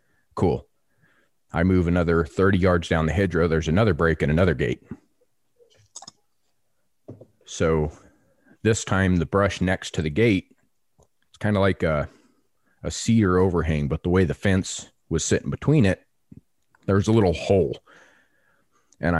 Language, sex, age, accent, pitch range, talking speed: English, male, 30-49, American, 80-100 Hz, 145 wpm